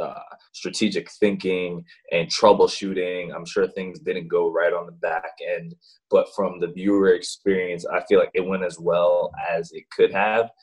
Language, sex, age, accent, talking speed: English, male, 20-39, American, 175 wpm